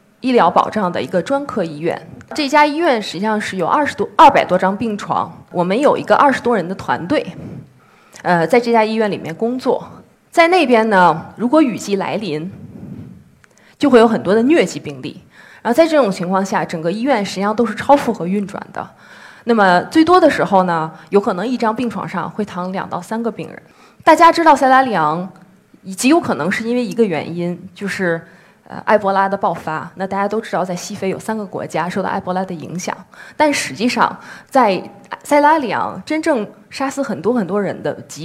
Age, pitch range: 20-39, 185-255 Hz